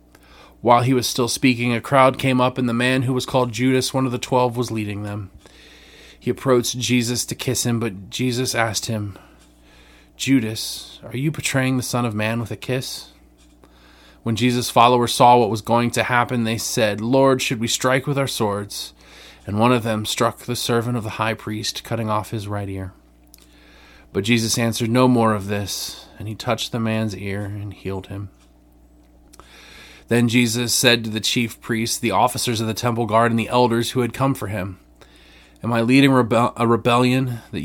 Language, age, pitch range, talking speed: English, 30-49, 95-125 Hz, 195 wpm